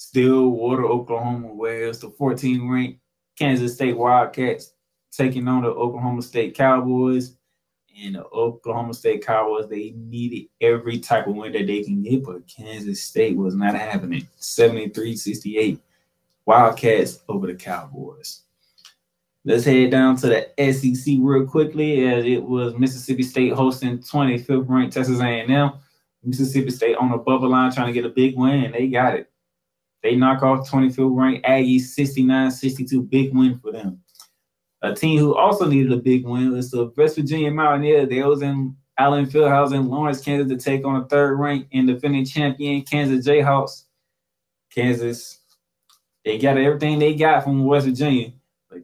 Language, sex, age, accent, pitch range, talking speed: English, male, 20-39, American, 120-135 Hz, 155 wpm